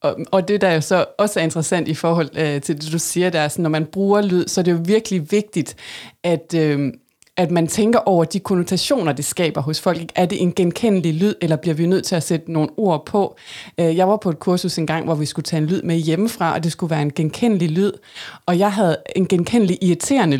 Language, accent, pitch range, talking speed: Danish, native, 160-200 Hz, 240 wpm